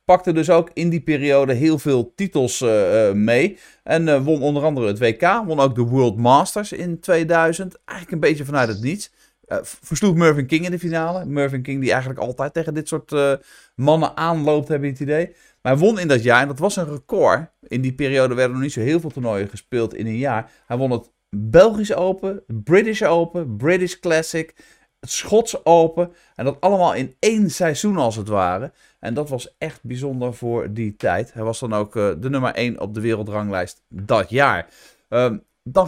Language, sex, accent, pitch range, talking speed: Dutch, male, Dutch, 125-170 Hz, 200 wpm